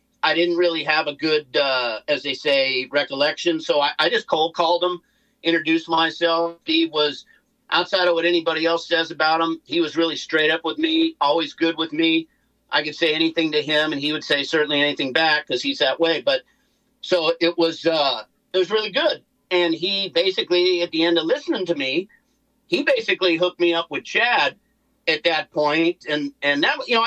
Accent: American